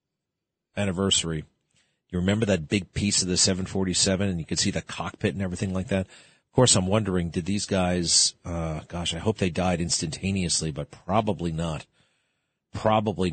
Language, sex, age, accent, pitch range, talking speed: English, male, 40-59, American, 90-115 Hz, 165 wpm